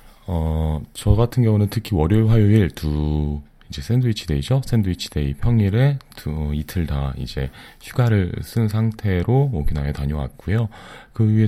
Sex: male